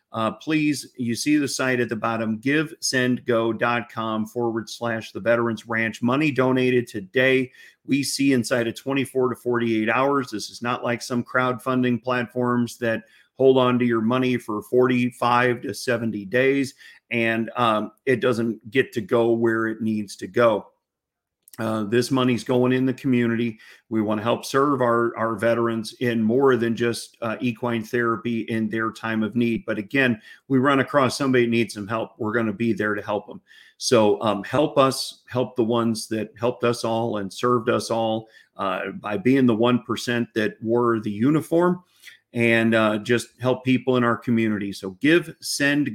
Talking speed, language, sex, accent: 180 wpm, English, male, American